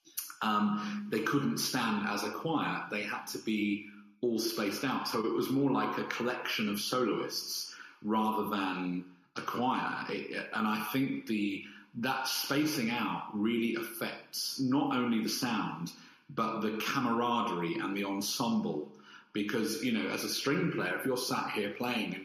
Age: 40-59